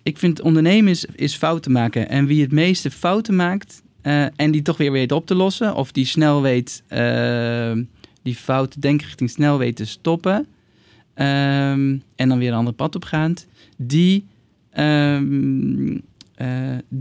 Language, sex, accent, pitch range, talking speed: Dutch, male, Dutch, 120-155 Hz, 160 wpm